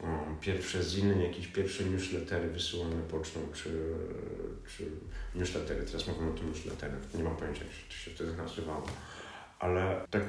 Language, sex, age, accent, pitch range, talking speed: Polish, male, 40-59, native, 85-100 Hz, 150 wpm